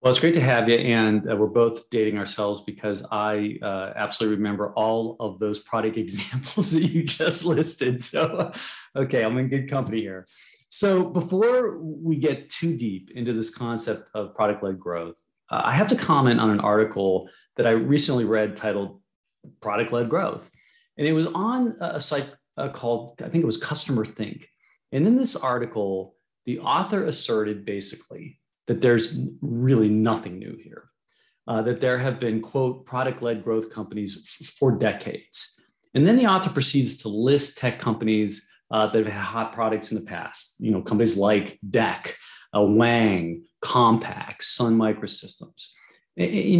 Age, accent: 30-49, American